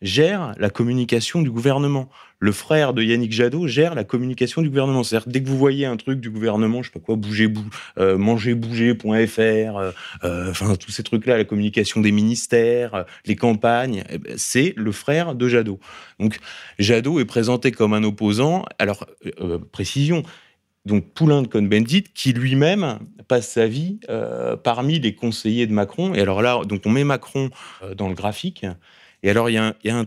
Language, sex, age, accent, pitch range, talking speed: French, male, 20-39, French, 105-125 Hz, 190 wpm